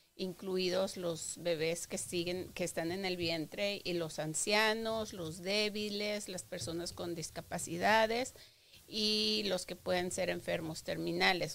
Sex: female